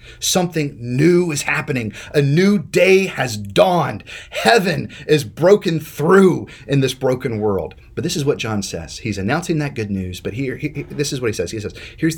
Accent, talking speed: American, 190 wpm